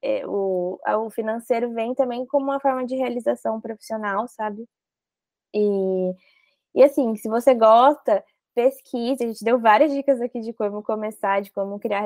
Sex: female